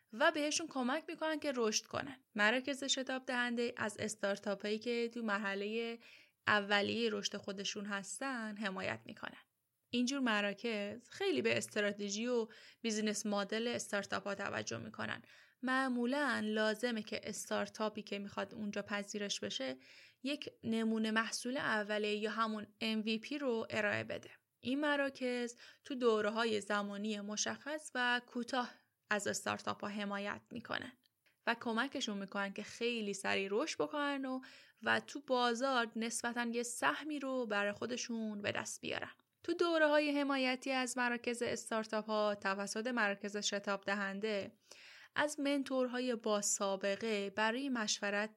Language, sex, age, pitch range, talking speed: Persian, female, 10-29, 205-250 Hz, 130 wpm